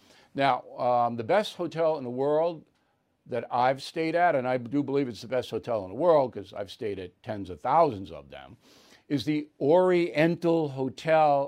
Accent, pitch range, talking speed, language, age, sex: American, 135-170 Hz, 190 wpm, English, 60-79, male